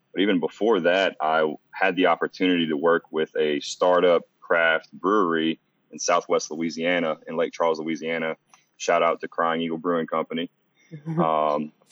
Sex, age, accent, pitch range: male, 20-39, American, 80-90 Hz